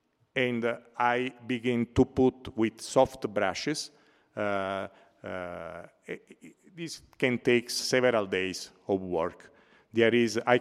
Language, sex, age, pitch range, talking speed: Italian, male, 50-69, 100-120 Hz, 115 wpm